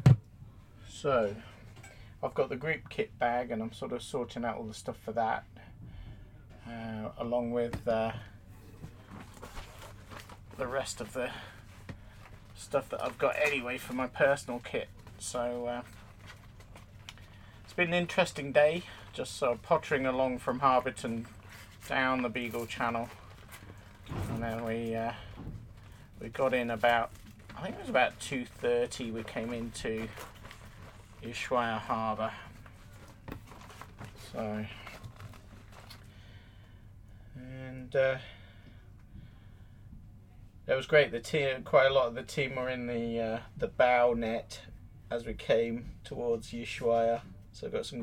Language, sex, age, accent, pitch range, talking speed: English, male, 40-59, British, 105-120 Hz, 130 wpm